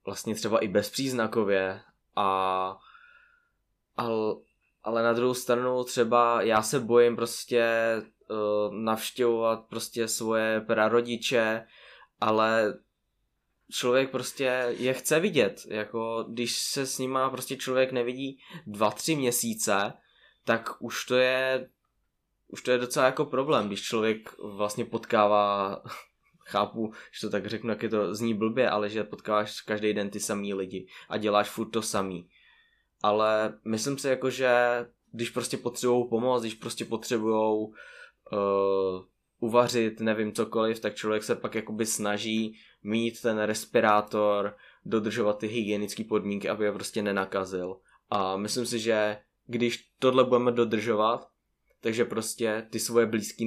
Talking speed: 130 wpm